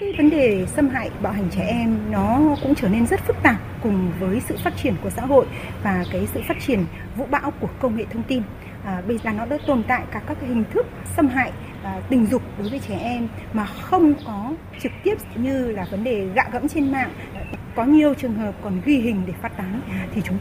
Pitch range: 200-260 Hz